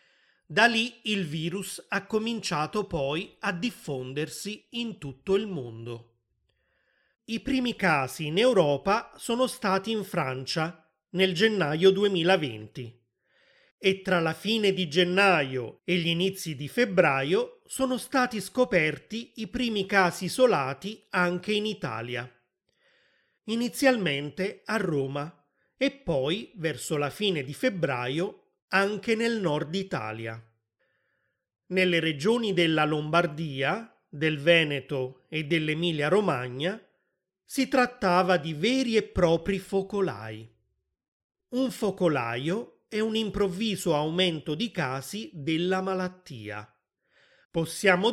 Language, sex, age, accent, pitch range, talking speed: Italian, male, 30-49, native, 150-210 Hz, 110 wpm